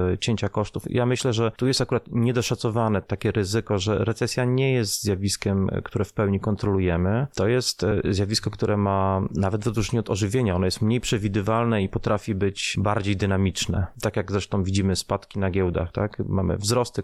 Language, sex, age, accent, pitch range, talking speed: Polish, male, 30-49, native, 95-115 Hz, 170 wpm